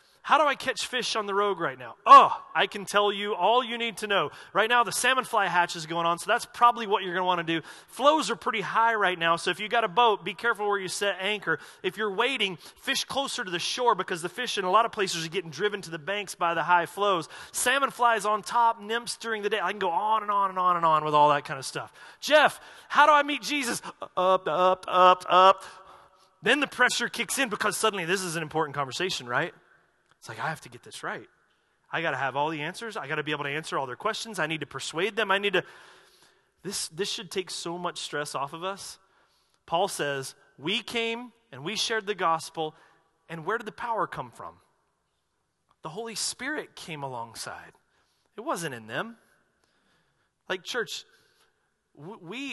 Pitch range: 170-230 Hz